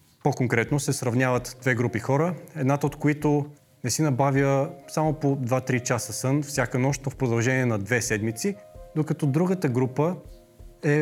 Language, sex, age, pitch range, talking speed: Bulgarian, male, 30-49, 120-145 Hz, 160 wpm